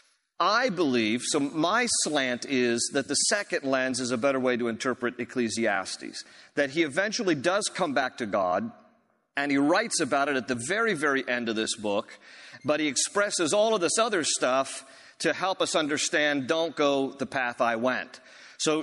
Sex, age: male, 50-69